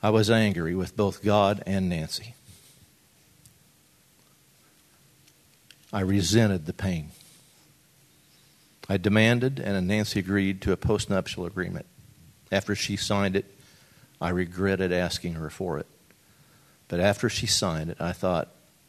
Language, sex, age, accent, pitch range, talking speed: English, male, 50-69, American, 90-105 Hz, 120 wpm